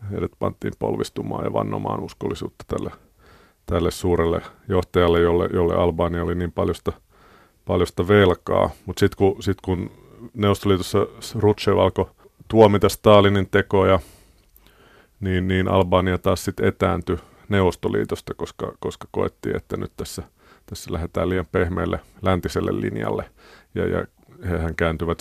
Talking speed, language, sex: 125 wpm, Finnish, male